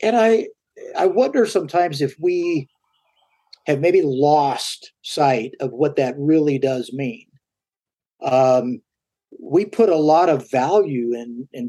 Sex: male